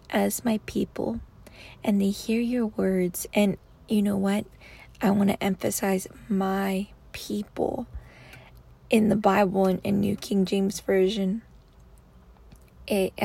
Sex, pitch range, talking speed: female, 185-215 Hz, 125 wpm